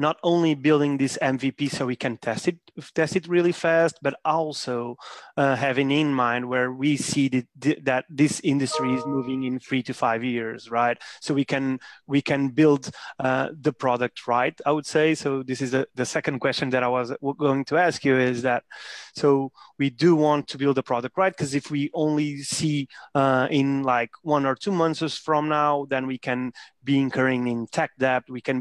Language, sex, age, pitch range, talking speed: English, male, 30-49, 130-150 Hz, 205 wpm